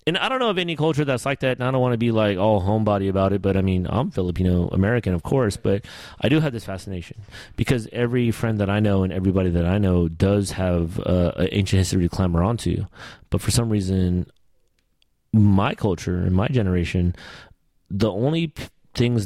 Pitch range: 95-115 Hz